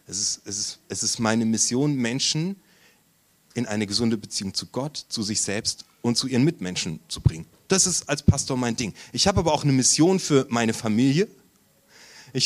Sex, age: male, 30-49